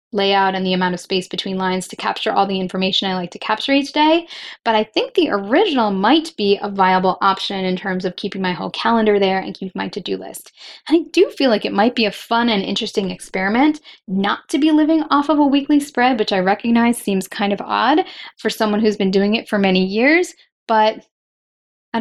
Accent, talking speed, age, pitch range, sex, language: American, 220 wpm, 10-29, 195-270 Hz, female, English